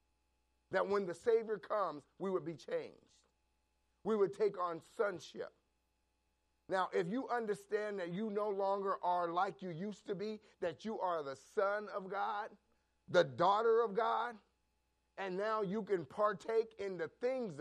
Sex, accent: male, American